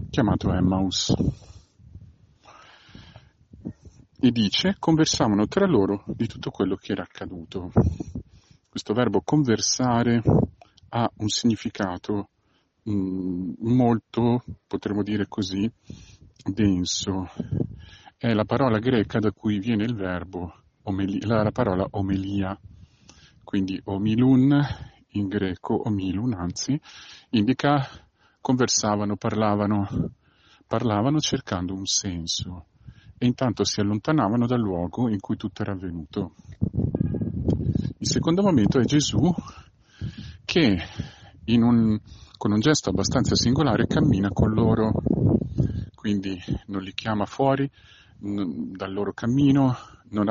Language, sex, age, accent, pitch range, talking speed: Italian, male, 50-69, native, 95-120 Hz, 100 wpm